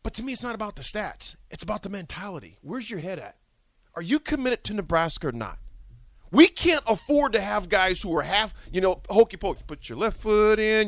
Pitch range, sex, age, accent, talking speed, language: 200-325 Hz, male, 40-59, American, 225 wpm, English